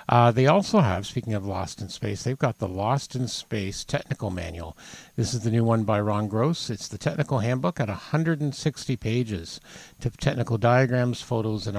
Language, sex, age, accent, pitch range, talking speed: English, male, 50-69, American, 100-125 Hz, 190 wpm